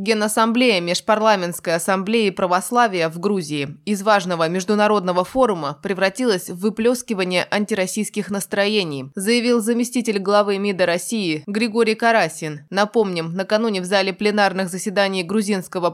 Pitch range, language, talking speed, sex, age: 180-220 Hz, Russian, 110 wpm, female, 20-39